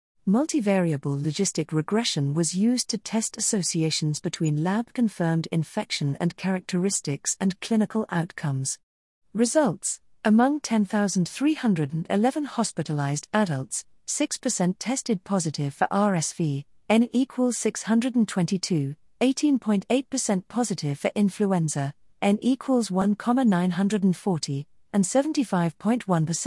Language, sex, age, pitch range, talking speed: English, female, 40-59, 160-220 Hz, 80 wpm